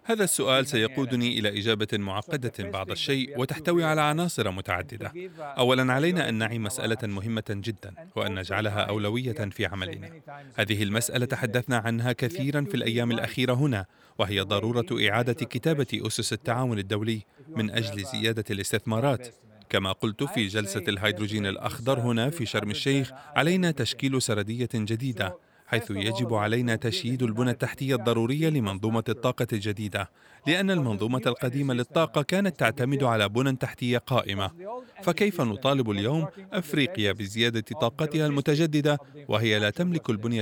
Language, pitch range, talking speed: Arabic, 110-145 Hz, 130 wpm